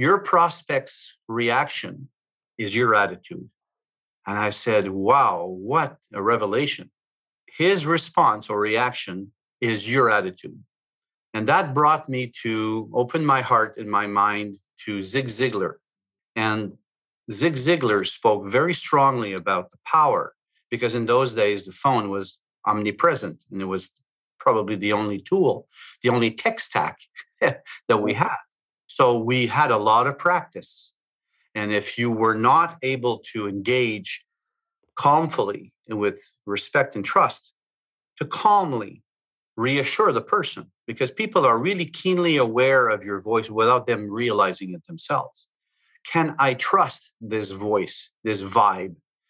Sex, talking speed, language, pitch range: male, 135 wpm, English, 105-140 Hz